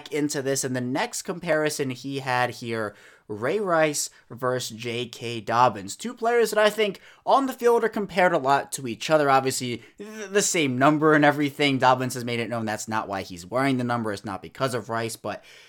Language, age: English, 20-39